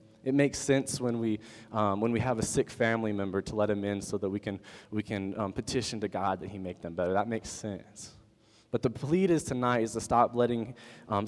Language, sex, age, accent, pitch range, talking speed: English, male, 20-39, American, 105-130 Hz, 240 wpm